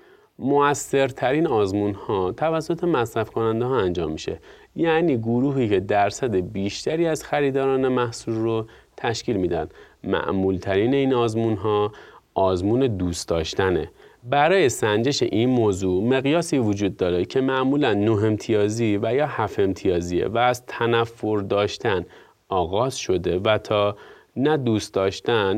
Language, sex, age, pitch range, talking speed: Persian, male, 30-49, 100-125 Hz, 125 wpm